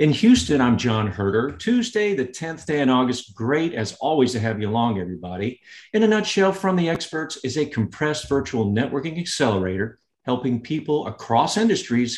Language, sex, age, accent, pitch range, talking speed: English, male, 50-69, American, 110-150 Hz, 170 wpm